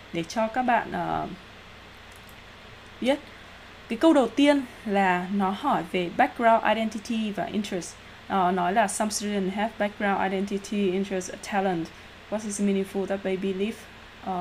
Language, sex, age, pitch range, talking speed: Vietnamese, female, 20-39, 180-220 Hz, 145 wpm